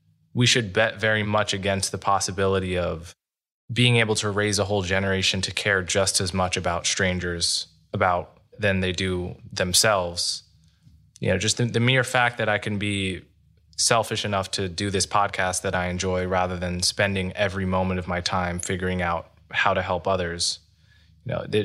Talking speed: 175 wpm